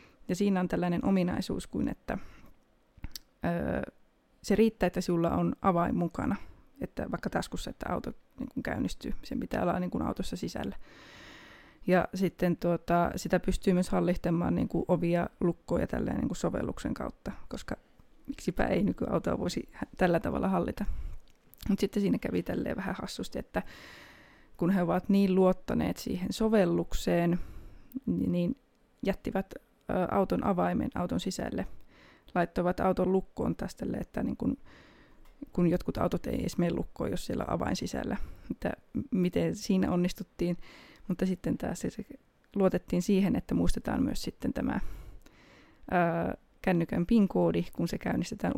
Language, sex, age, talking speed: Finnish, female, 20-39, 135 wpm